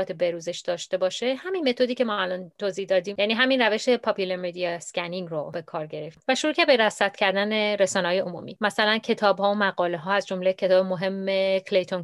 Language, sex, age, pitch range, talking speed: Persian, female, 30-49, 180-215 Hz, 200 wpm